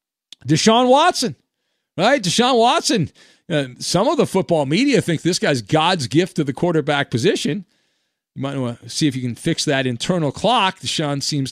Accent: American